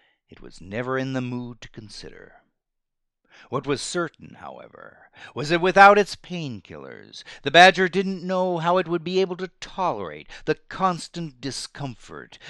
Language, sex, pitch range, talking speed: English, male, 110-165 Hz, 150 wpm